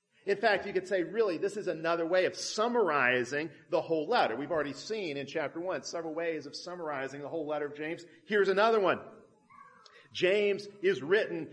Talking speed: 185 wpm